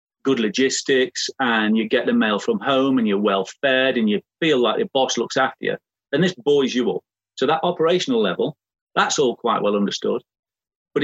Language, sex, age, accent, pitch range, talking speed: English, male, 40-59, British, 115-155 Hz, 200 wpm